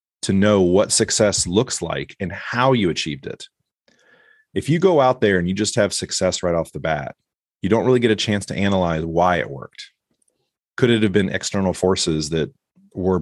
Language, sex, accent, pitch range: English, male, American, 90-110 Hz